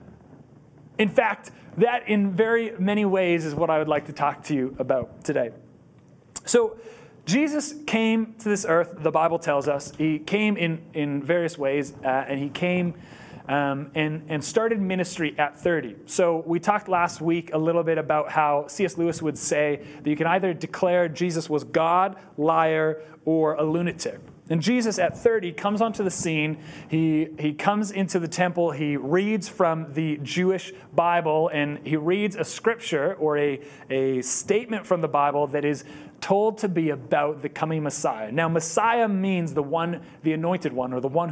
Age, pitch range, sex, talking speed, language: 30-49, 150-185 Hz, male, 180 wpm, English